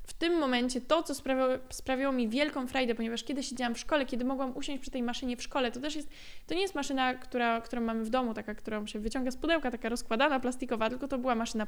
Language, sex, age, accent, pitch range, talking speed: Polish, female, 20-39, native, 240-285 Hz, 240 wpm